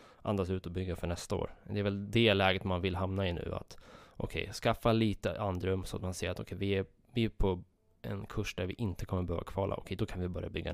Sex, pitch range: male, 90-105 Hz